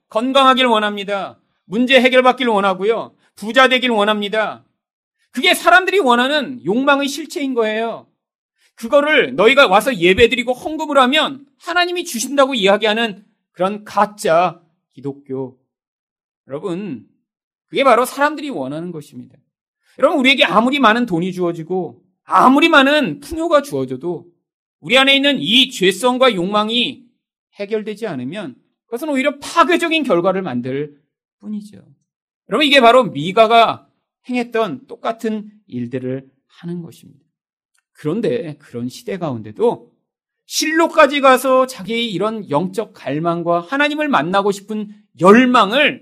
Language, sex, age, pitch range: Korean, male, 40-59, 165-260 Hz